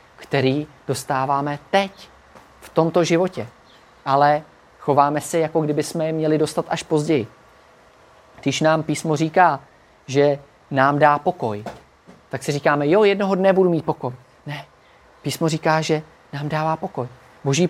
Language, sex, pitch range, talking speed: Czech, male, 135-165 Hz, 140 wpm